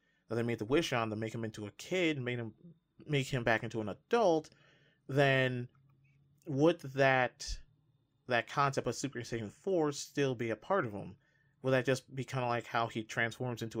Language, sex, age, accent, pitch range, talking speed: English, male, 30-49, American, 110-140 Hz, 205 wpm